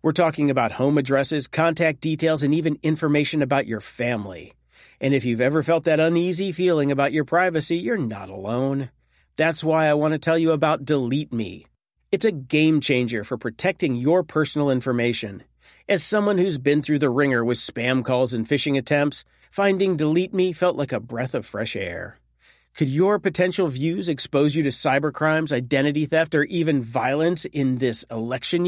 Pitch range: 130-170 Hz